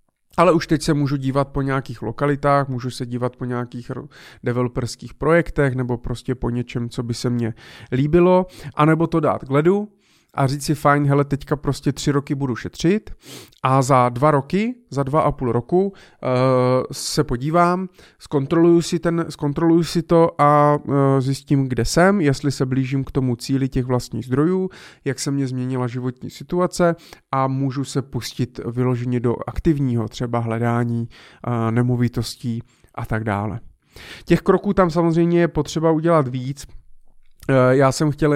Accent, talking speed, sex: native, 155 wpm, male